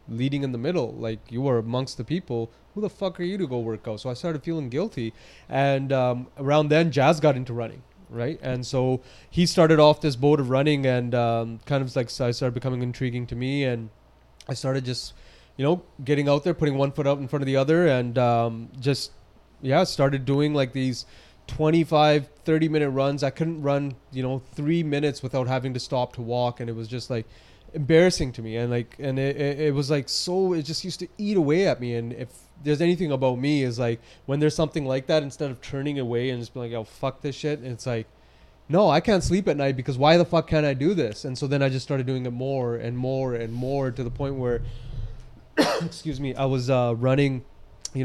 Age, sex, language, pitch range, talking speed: 20-39, male, English, 125-150 Hz, 230 wpm